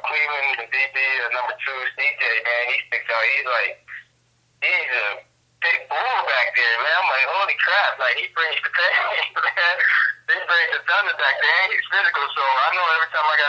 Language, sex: English, male